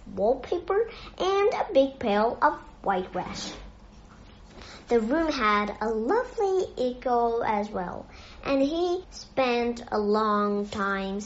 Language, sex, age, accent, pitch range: Chinese, male, 40-59, American, 200-270 Hz